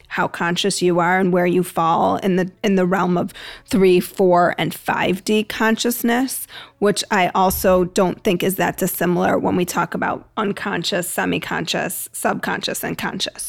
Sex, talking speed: female, 160 wpm